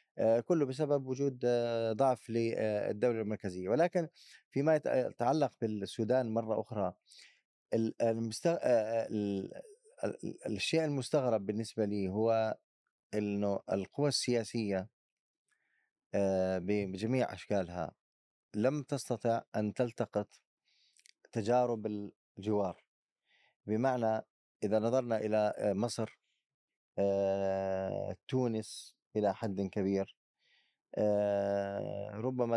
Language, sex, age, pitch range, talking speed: Arabic, male, 20-39, 105-135 Hz, 70 wpm